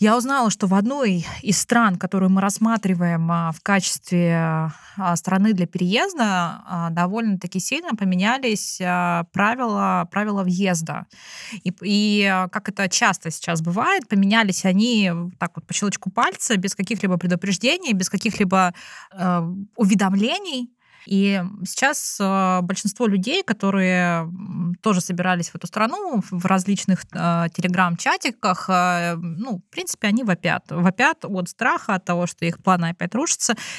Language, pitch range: Russian, 180-210 Hz